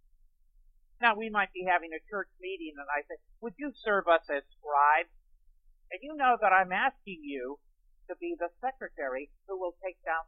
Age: 50-69